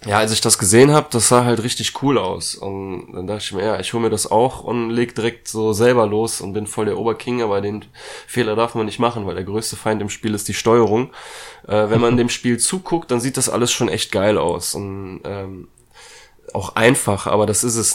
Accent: German